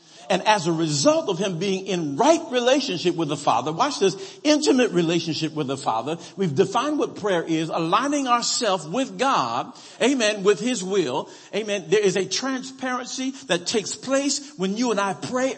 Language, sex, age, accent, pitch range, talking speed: English, male, 50-69, American, 180-250 Hz, 175 wpm